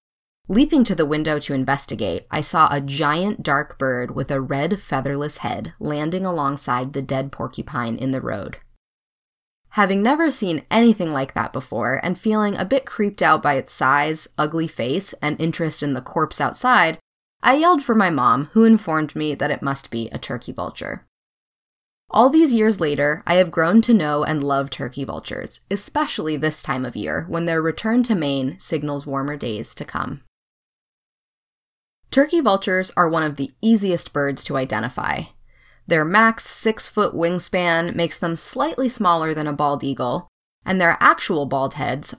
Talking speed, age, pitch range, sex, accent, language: 170 wpm, 20-39, 140-185 Hz, female, American, English